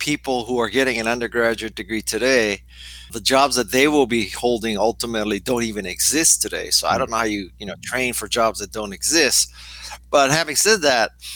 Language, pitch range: English, 110-130 Hz